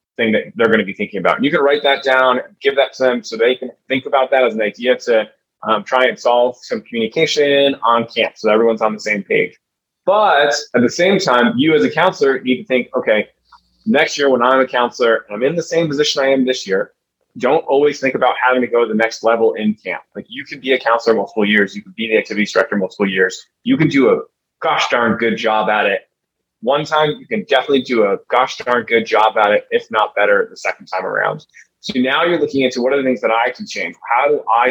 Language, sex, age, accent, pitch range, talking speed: English, male, 20-39, American, 120-165 Hz, 250 wpm